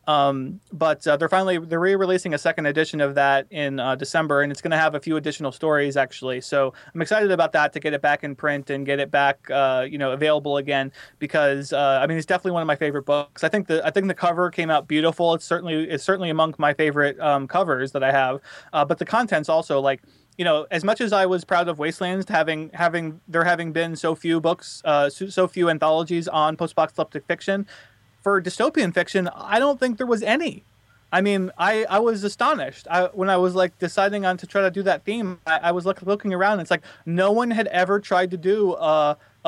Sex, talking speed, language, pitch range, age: male, 235 wpm, English, 145-185 Hz, 20-39